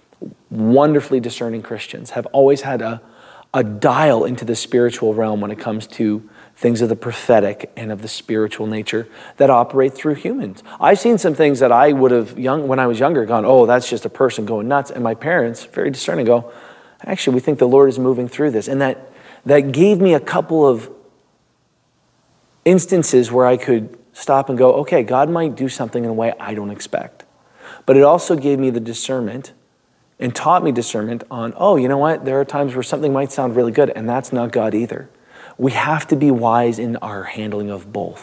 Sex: male